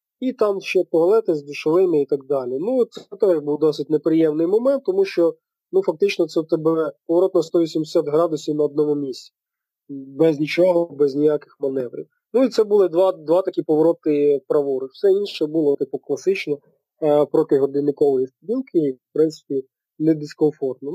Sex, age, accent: male, 20-39, native